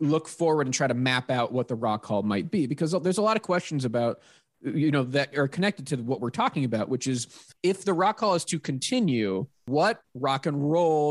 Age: 20-39